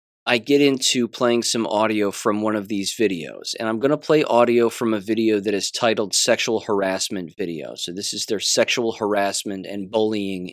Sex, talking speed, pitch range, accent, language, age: male, 195 wpm, 100-130 Hz, American, English, 30-49